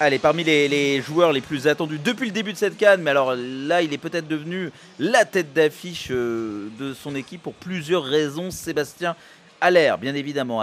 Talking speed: 190 wpm